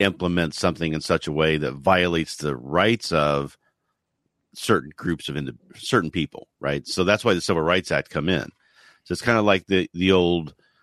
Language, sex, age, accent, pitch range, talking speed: English, male, 50-69, American, 75-90 Hz, 200 wpm